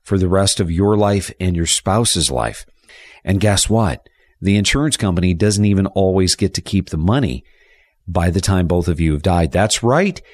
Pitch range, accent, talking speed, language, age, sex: 90-115 Hz, American, 195 wpm, English, 50-69, male